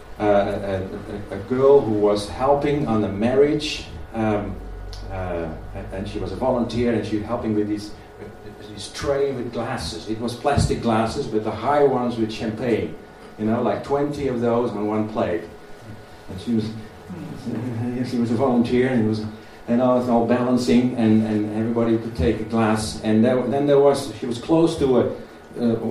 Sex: male